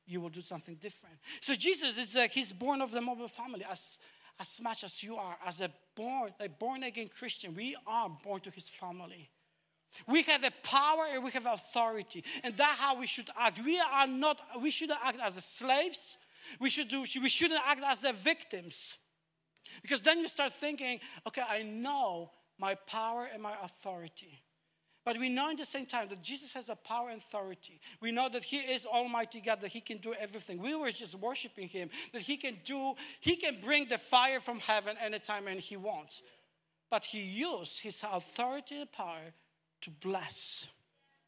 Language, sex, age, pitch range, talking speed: English, male, 60-79, 200-265 Hz, 190 wpm